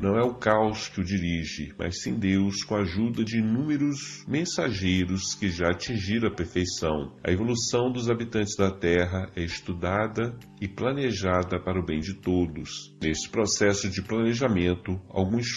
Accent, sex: Brazilian, male